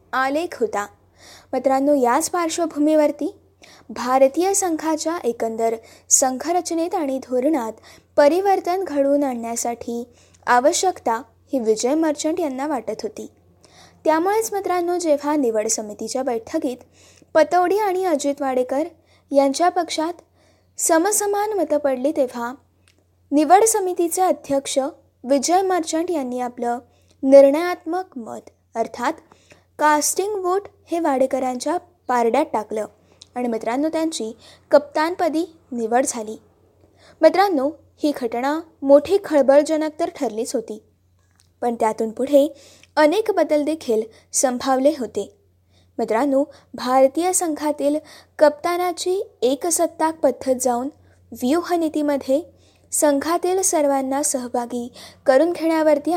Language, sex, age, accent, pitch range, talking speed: Marathi, female, 20-39, native, 245-330 Hz, 95 wpm